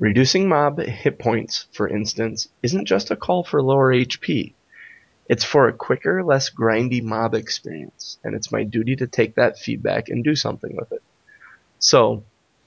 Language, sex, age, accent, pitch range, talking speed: English, male, 20-39, American, 110-135 Hz, 165 wpm